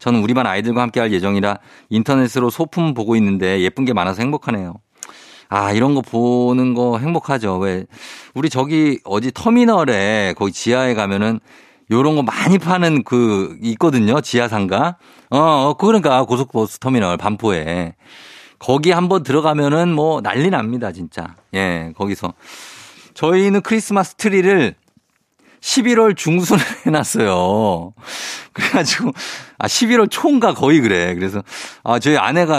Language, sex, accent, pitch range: Korean, male, native, 100-150 Hz